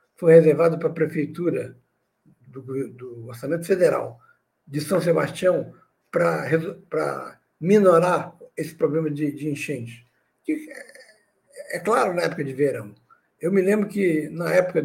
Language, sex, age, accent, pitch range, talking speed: Portuguese, male, 60-79, Brazilian, 150-190 Hz, 135 wpm